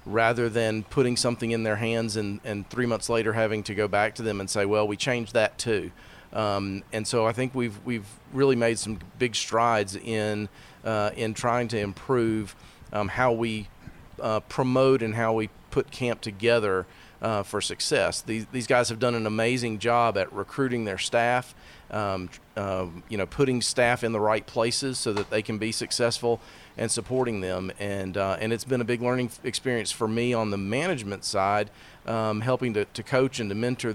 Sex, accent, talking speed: male, American, 195 wpm